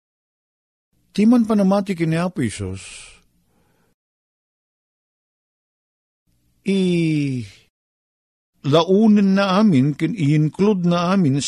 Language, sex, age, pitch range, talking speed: Filipino, male, 50-69, 110-175 Hz, 60 wpm